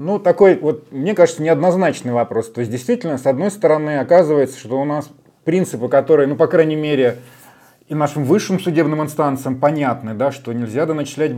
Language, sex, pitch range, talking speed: Russian, male, 125-155 Hz, 175 wpm